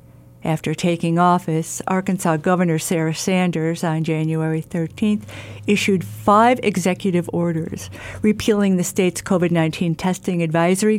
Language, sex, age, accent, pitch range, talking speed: English, female, 50-69, American, 165-220 Hz, 110 wpm